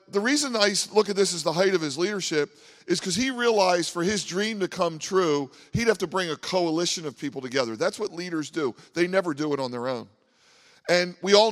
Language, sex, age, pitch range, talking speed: English, male, 40-59, 150-190 Hz, 235 wpm